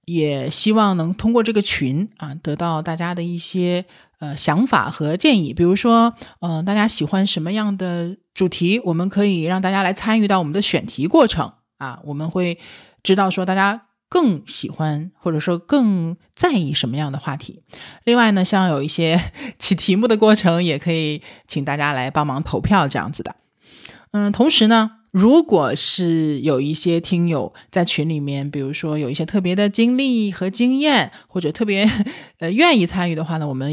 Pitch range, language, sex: 150-200 Hz, Chinese, male